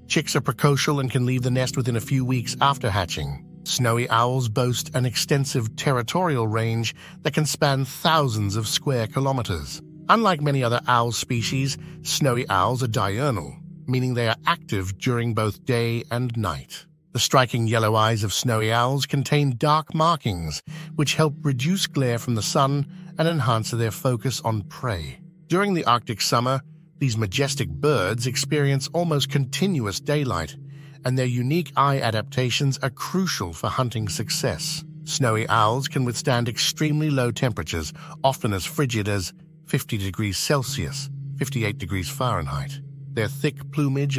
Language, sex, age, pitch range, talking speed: English, male, 50-69, 115-150 Hz, 150 wpm